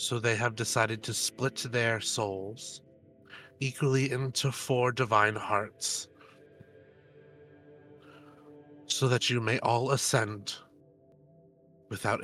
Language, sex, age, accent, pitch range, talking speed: English, male, 30-49, American, 110-130 Hz, 100 wpm